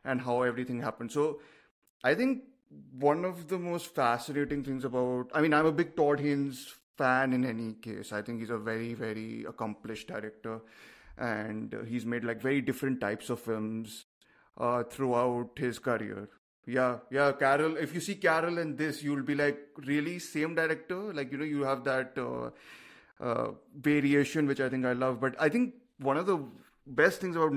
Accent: Indian